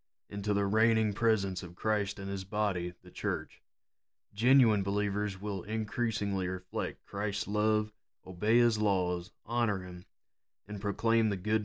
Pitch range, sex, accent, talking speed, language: 95-110 Hz, male, American, 140 wpm, English